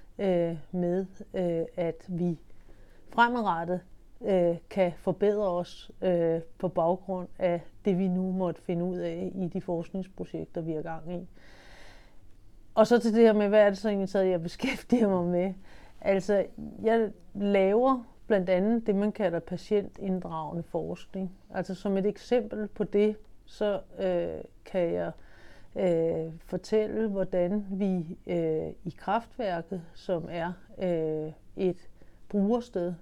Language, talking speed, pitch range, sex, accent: Danish, 120 wpm, 170-205 Hz, female, native